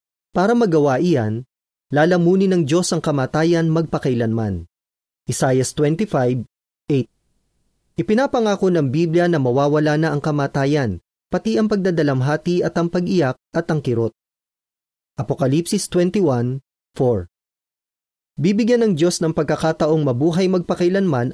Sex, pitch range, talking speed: male, 120-170 Hz, 110 wpm